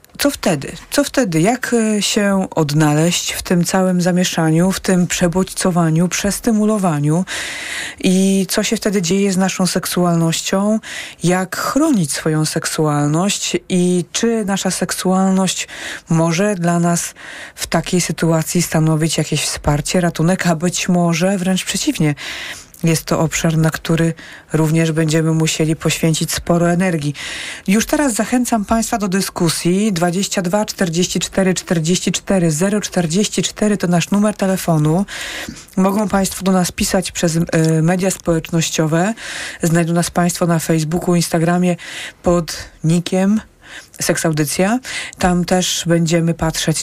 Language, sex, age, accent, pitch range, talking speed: Polish, female, 40-59, native, 160-195 Hz, 120 wpm